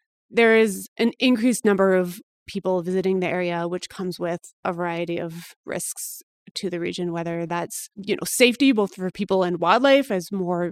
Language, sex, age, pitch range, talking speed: English, female, 30-49, 180-235 Hz, 180 wpm